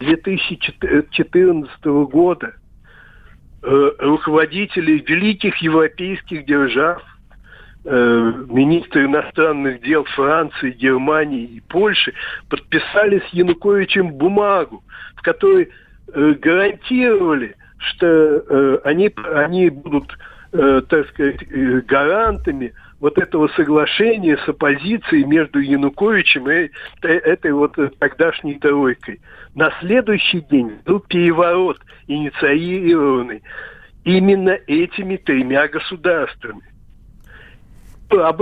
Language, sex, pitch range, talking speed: Russian, male, 145-200 Hz, 80 wpm